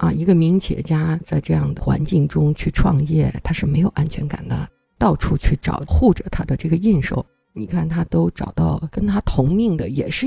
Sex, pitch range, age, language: female, 140-185 Hz, 50-69, Chinese